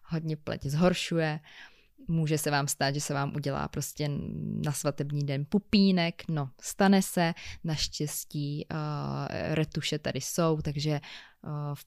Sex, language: female, Czech